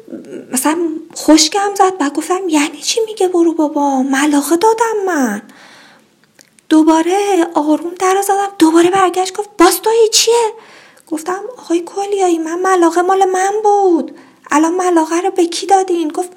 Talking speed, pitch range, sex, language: 135 wpm, 285-370 Hz, female, Persian